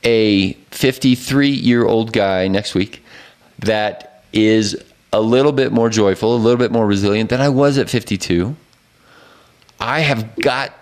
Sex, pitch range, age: male, 110-135 Hz, 40-59